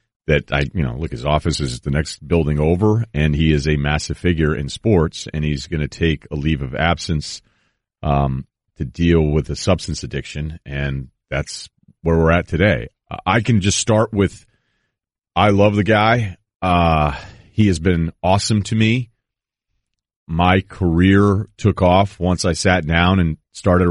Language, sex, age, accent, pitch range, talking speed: English, male, 40-59, American, 75-100 Hz, 175 wpm